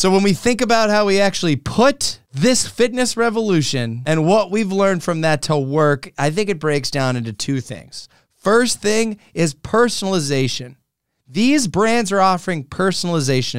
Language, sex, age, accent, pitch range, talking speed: English, male, 30-49, American, 145-215 Hz, 165 wpm